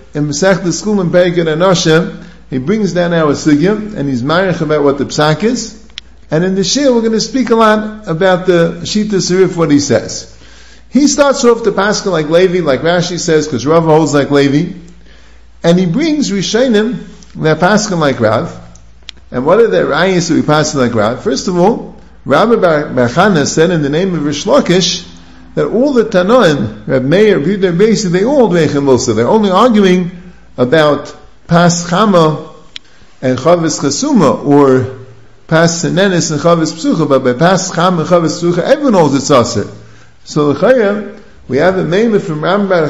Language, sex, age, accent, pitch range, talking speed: English, male, 50-69, American, 145-200 Hz, 180 wpm